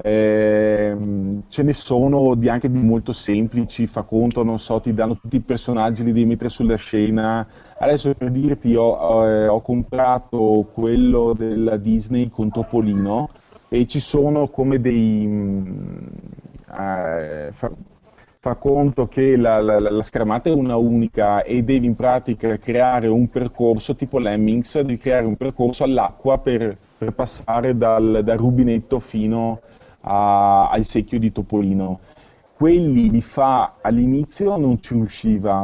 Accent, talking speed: native, 145 wpm